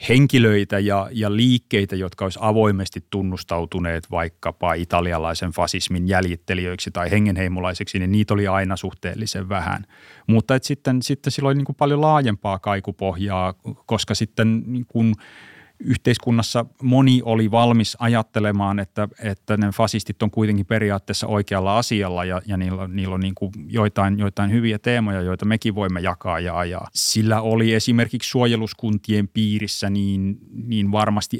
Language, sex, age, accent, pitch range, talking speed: Finnish, male, 30-49, native, 95-110 Hz, 135 wpm